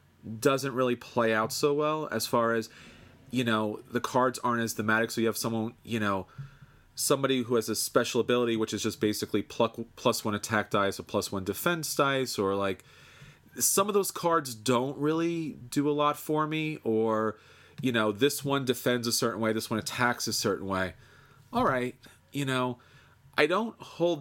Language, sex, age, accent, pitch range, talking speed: English, male, 30-49, American, 110-135 Hz, 190 wpm